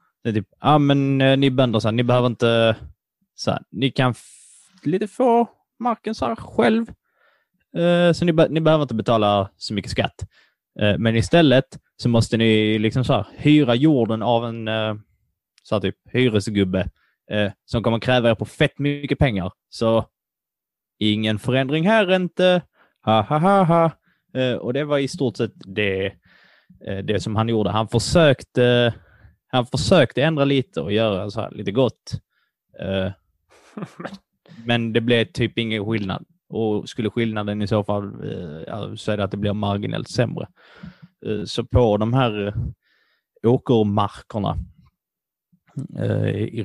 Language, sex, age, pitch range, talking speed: Swedish, male, 20-39, 105-135 Hz, 145 wpm